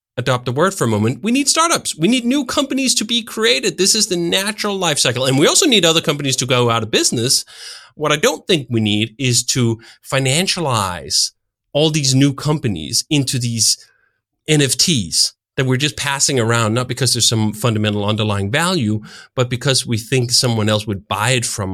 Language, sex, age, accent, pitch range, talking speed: English, male, 30-49, American, 105-150 Hz, 195 wpm